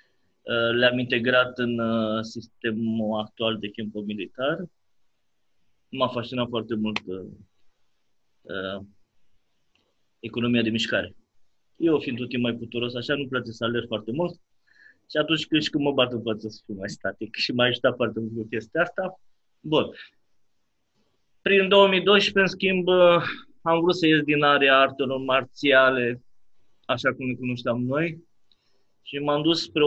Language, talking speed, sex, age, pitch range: Romanian, 135 wpm, male, 30-49, 115-150 Hz